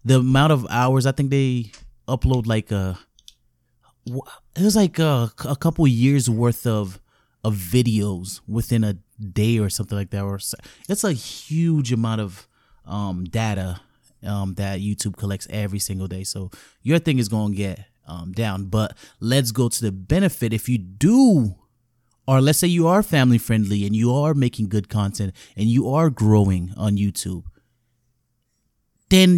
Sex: male